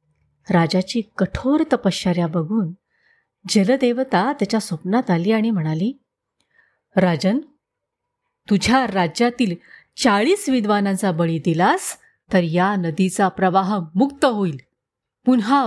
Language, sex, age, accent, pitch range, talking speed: Marathi, female, 30-49, native, 190-315 Hz, 90 wpm